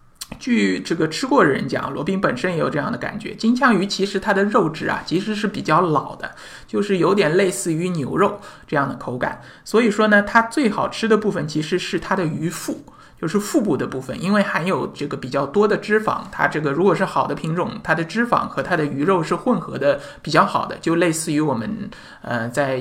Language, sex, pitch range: Chinese, male, 150-205 Hz